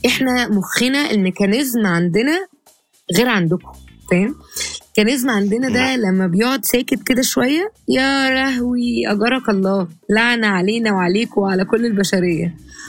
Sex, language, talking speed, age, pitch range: female, Arabic, 115 wpm, 20-39, 185-245 Hz